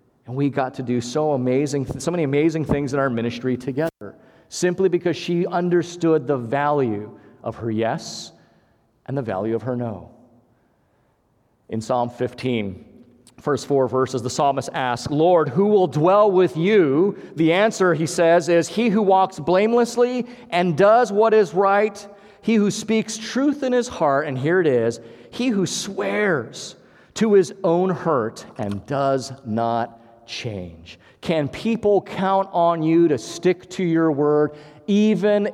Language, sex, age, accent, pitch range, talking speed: English, male, 40-59, American, 120-175 Hz, 155 wpm